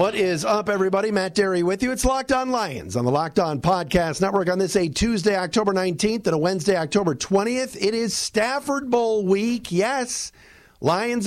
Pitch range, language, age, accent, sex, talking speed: 165-215 Hz, English, 50-69, American, male, 190 wpm